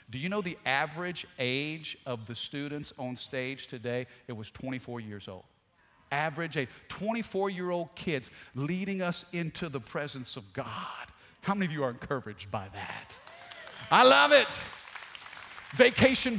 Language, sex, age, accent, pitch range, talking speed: English, male, 50-69, American, 130-175 Hz, 145 wpm